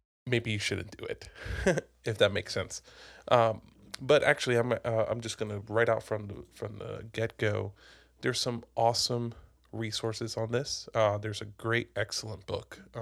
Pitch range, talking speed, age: 105-120 Hz, 170 wpm, 20-39